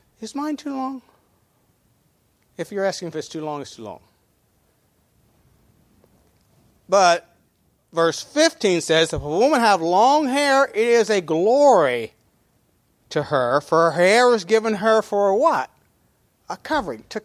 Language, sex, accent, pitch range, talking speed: English, male, American, 155-225 Hz, 145 wpm